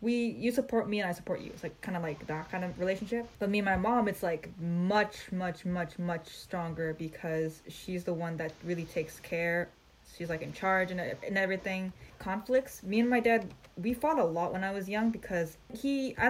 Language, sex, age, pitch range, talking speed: English, female, 10-29, 170-215 Hz, 220 wpm